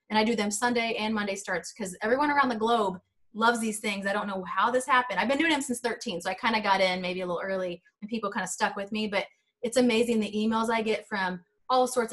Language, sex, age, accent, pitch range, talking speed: English, female, 20-39, American, 190-230 Hz, 270 wpm